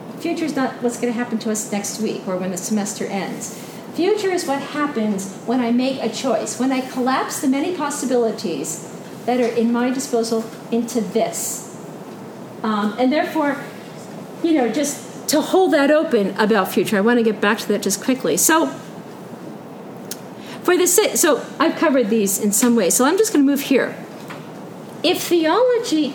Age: 50-69